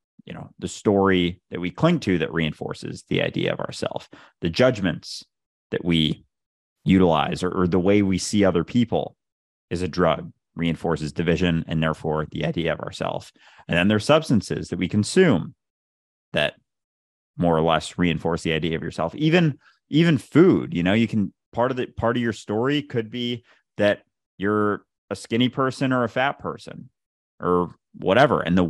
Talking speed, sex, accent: 175 wpm, male, American